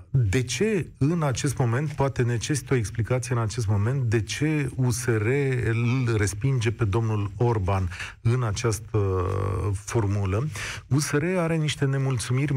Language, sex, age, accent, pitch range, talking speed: Romanian, male, 40-59, native, 100-125 Hz, 130 wpm